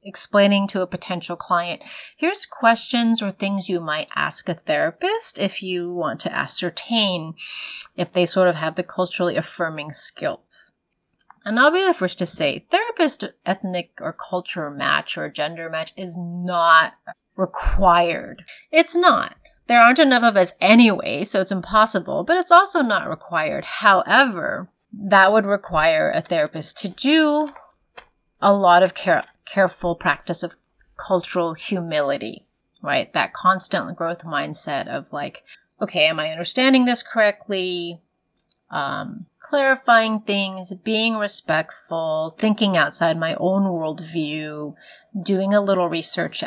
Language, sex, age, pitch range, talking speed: English, female, 30-49, 175-230 Hz, 135 wpm